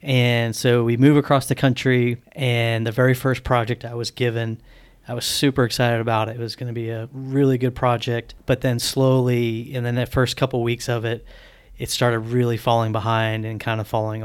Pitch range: 110-125 Hz